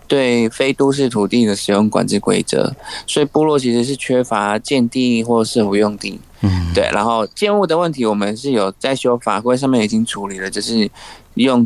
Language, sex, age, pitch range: Chinese, male, 20-39, 105-130 Hz